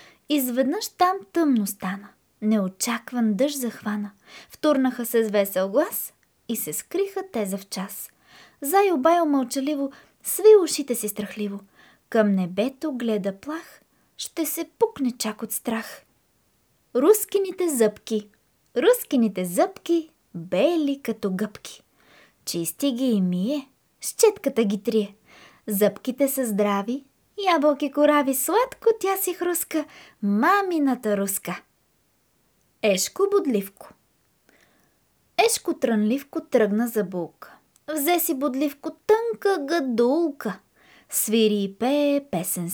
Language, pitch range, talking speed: Bulgarian, 210-320 Hz, 105 wpm